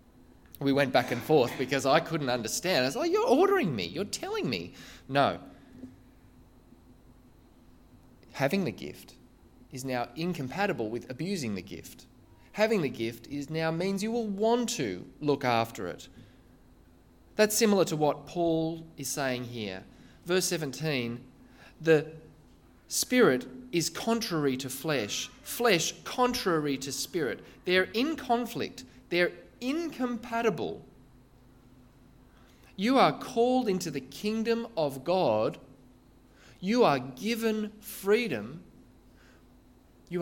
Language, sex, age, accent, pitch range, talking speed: English, male, 20-39, Australian, 130-210 Hz, 120 wpm